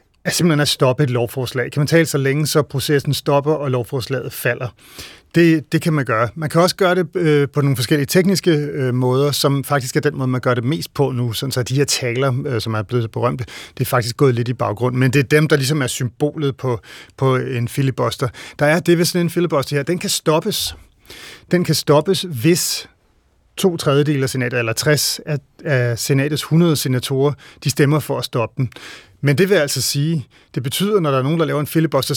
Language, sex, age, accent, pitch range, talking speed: Danish, male, 30-49, native, 125-155 Hz, 215 wpm